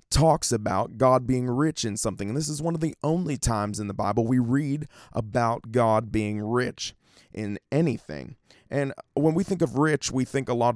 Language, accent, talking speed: English, American, 200 wpm